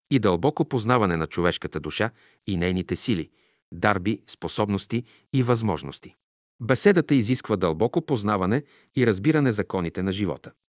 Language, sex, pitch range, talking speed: Bulgarian, male, 95-125 Hz, 125 wpm